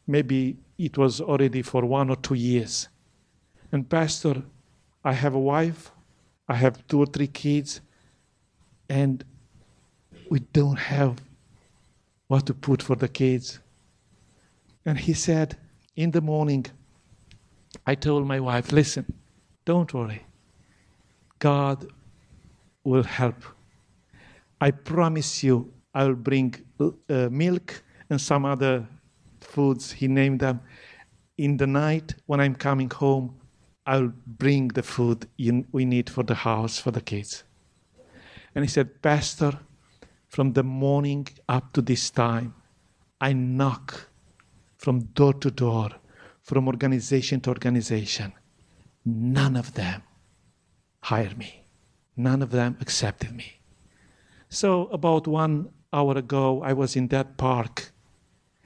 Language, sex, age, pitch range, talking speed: English, male, 50-69, 120-140 Hz, 125 wpm